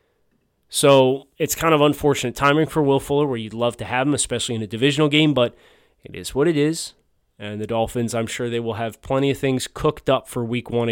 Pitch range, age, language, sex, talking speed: 120-145 Hz, 30-49, English, male, 230 wpm